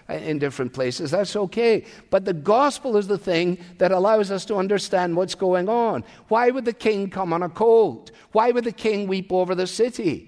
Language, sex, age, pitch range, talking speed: English, male, 50-69, 170-215 Hz, 205 wpm